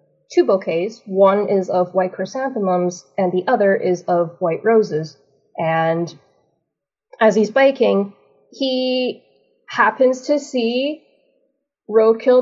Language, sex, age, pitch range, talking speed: English, female, 20-39, 185-220 Hz, 110 wpm